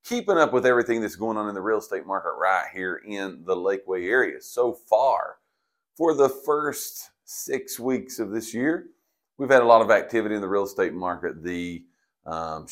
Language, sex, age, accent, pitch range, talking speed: English, male, 40-59, American, 95-130 Hz, 195 wpm